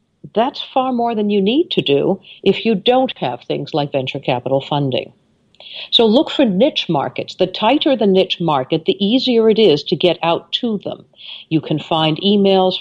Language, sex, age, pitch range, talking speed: English, female, 60-79, 145-205 Hz, 185 wpm